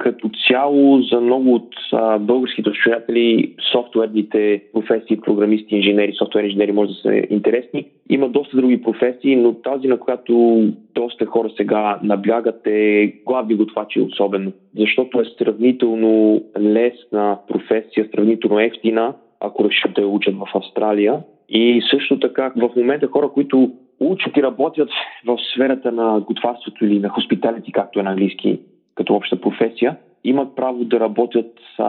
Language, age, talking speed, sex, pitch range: Bulgarian, 20-39, 145 wpm, male, 105-125 Hz